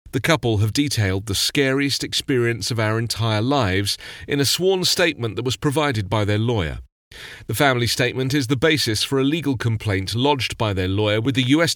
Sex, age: male, 40-59